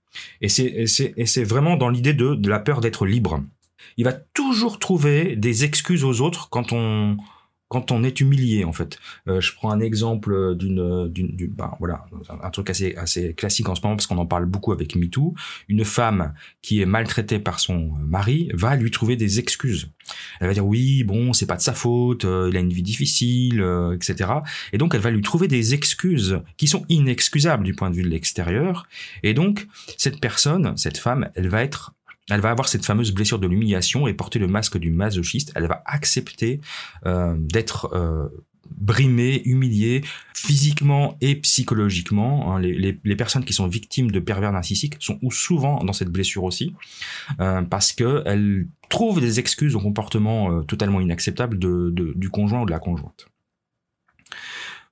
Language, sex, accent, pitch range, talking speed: French, male, French, 95-130 Hz, 195 wpm